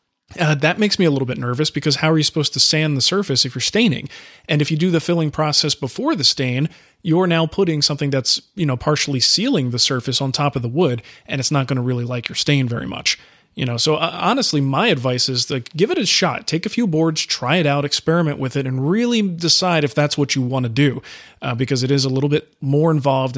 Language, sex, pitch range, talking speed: English, male, 130-160 Hz, 255 wpm